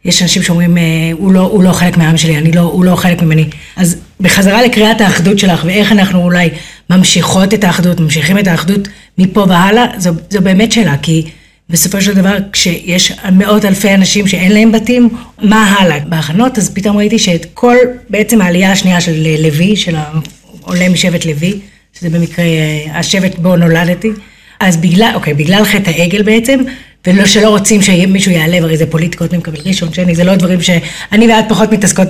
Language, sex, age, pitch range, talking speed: Hebrew, female, 30-49, 170-215 Hz, 175 wpm